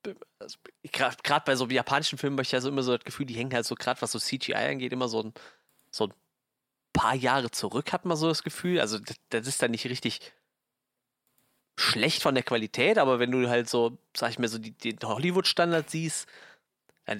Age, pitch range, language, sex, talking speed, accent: 30-49, 115-135 Hz, German, male, 215 wpm, German